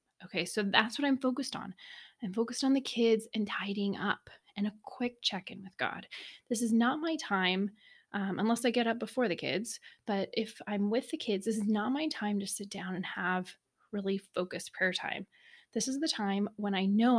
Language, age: English, 20-39